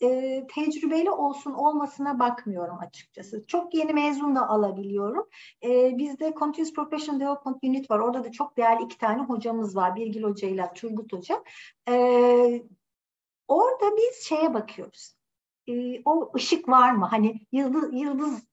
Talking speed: 140 wpm